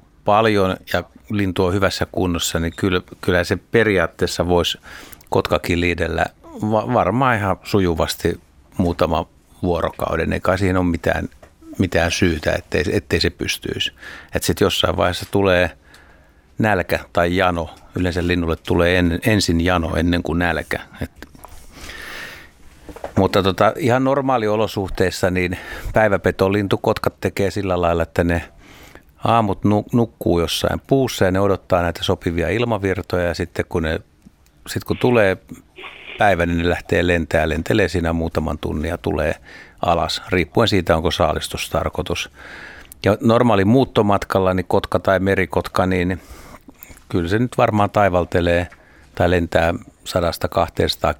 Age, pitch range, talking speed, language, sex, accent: 60-79, 85-100 Hz, 125 wpm, Finnish, male, native